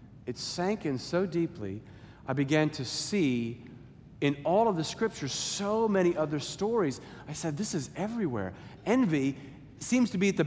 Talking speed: 165 wpm